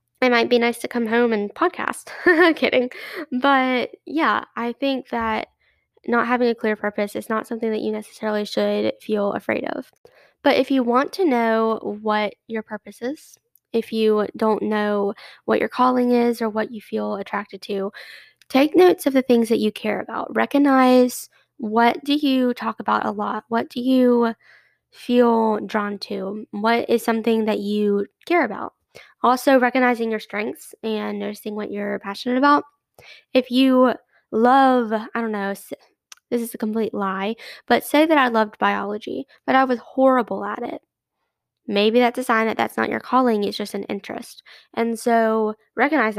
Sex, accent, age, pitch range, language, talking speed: female, American, 10-29, 210-255 Hz, English, 175 wpm